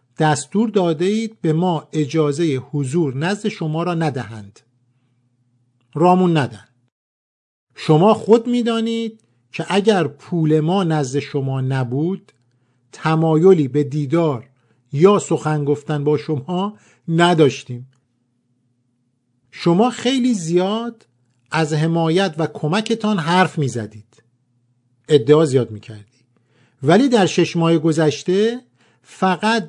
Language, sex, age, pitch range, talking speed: Persian, male, 50-69, 125-180 Hz, 105 wpm